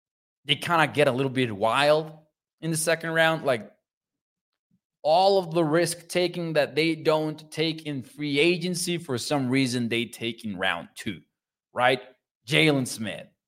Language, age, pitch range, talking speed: English, 20-39, 130-170 Hz, 155 wpm